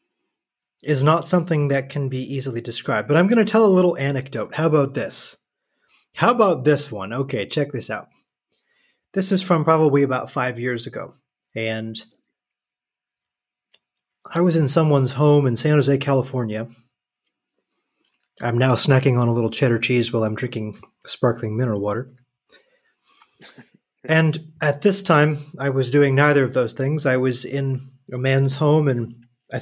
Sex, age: male, 30-49